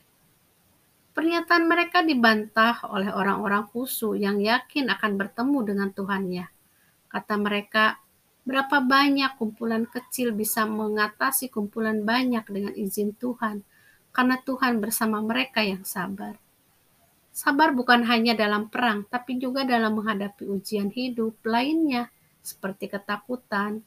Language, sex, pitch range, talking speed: Indonesian, female, 205-255 Hz, 115 wpm